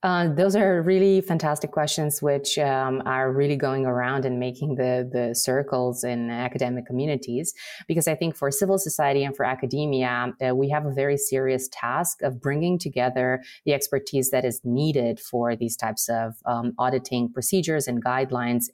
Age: 30-49